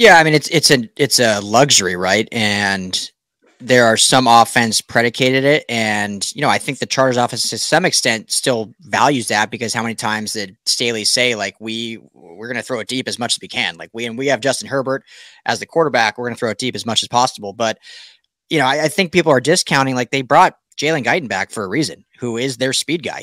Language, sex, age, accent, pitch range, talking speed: English, male, 30-49, American, 115-140 Hz, 245 wpm